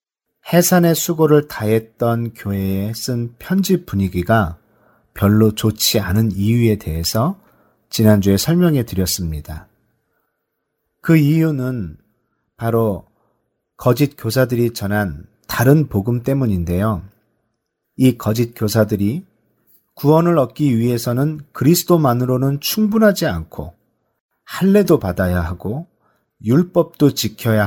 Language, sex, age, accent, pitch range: Korean, male, 40-59, native, 105-150 Hz